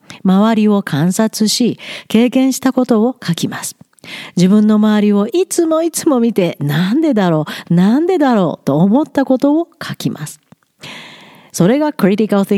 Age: 50-69